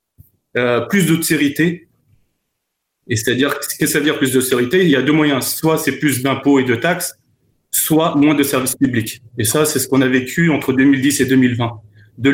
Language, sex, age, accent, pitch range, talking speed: French, male, 30-49, French, 130-165 Hz, 200 wpm